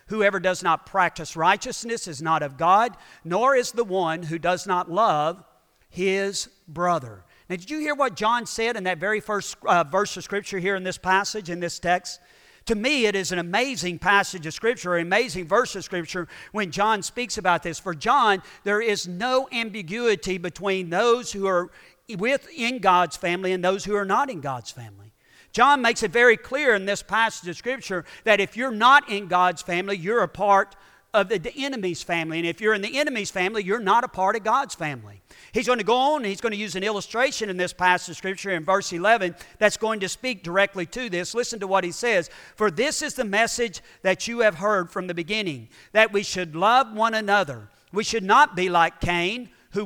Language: English